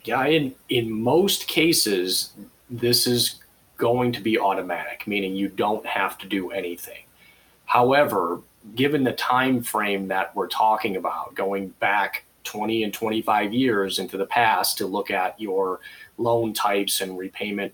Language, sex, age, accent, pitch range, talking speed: English, male, 30-49, American, 95-120 Hz, 150 wpm